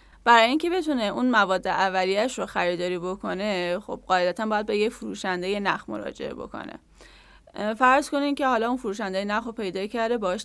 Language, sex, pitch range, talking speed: Persian, female, 195-250 Hz, 165 wpm